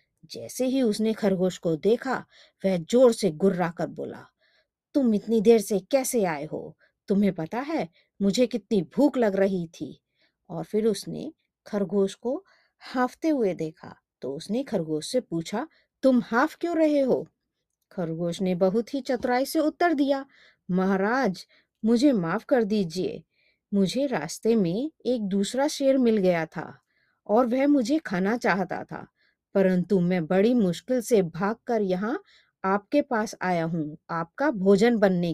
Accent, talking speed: native, 150 wpm